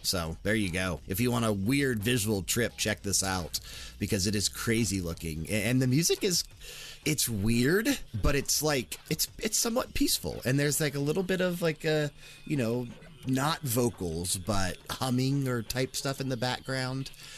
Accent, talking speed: American, 185 wpm